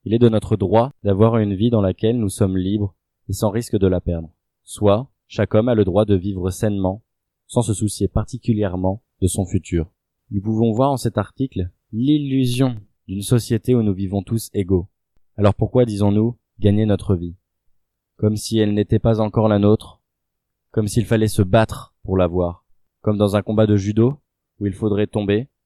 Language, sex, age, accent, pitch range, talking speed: French, male, 20-39, French, 95-115 Hz, 185 wpm